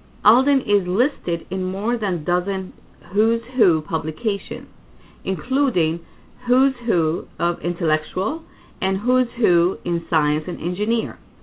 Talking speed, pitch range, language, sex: 120 wpm, 165-225 Hz, English, female